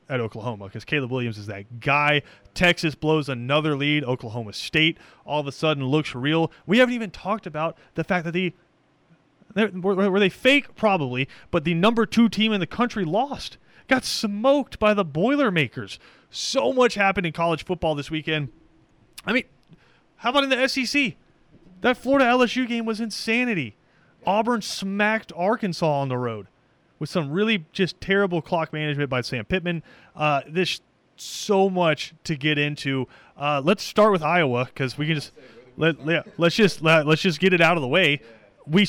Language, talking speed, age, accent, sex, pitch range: English, 175 wpm, 30-49, American, male, 145-195 Hz